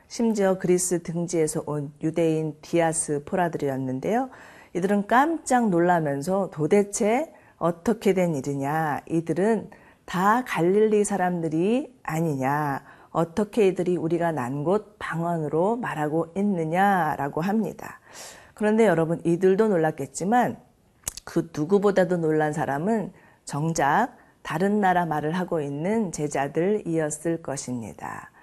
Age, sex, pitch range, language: 40-59, female, 155-200 Hz, Korean